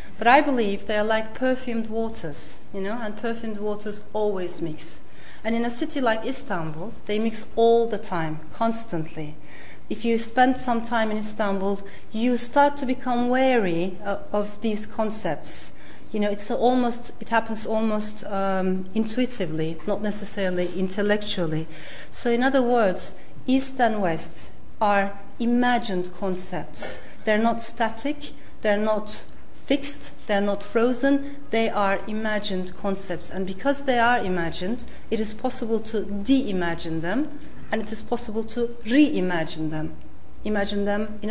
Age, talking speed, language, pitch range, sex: 40-59, 140 wpm, English, 195-235 Hz, female